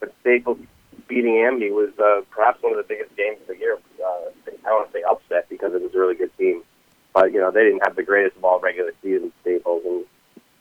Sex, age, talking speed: male, 30-49, 240 wpm